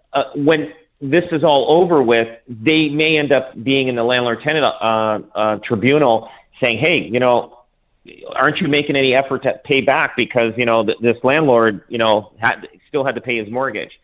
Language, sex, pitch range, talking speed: English, male, 115-145 Hz, 190 wpm